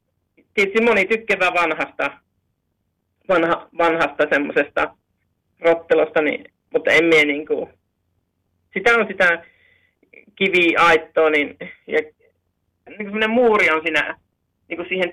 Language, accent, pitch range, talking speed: Finnish, native, 145-190 Hz, 105 wpm